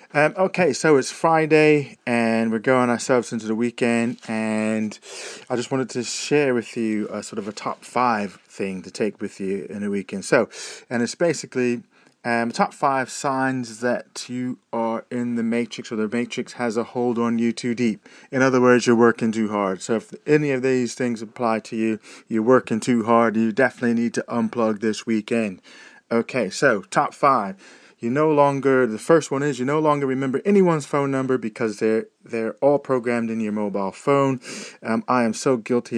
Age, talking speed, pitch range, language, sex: 30-49, 195 wpm, 110-130 Hz, English, male